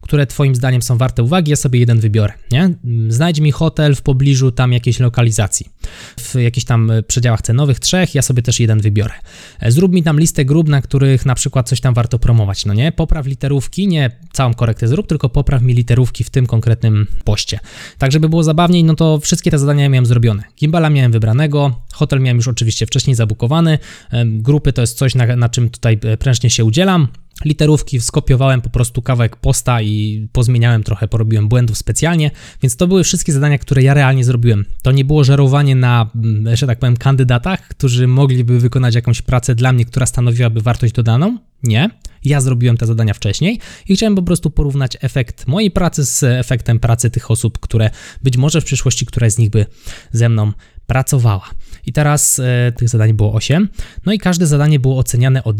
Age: 20-39